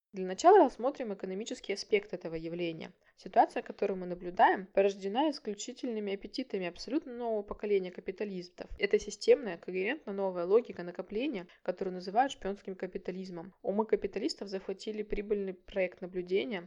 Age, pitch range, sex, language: 20-39, 180-220 Hz, female, Russian